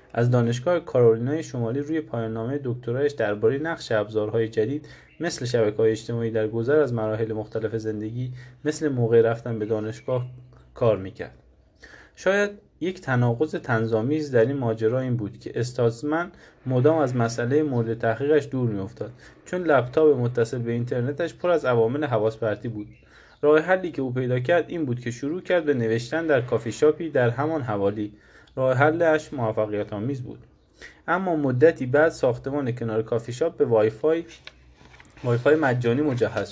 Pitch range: 115-150 Hz